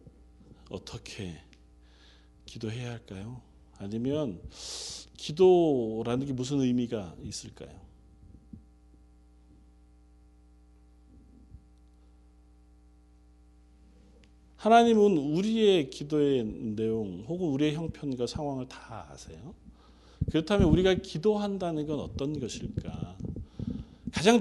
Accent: native